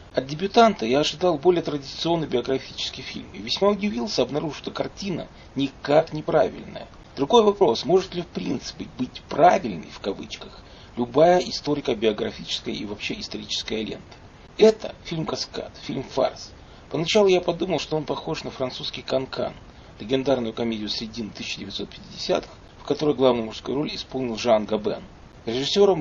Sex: male